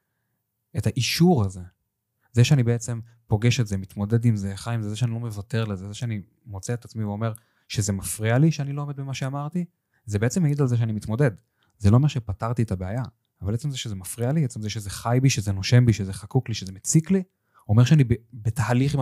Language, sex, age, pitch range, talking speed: Hebrew, male, 20-39, 105-125 Hz, 225 wpm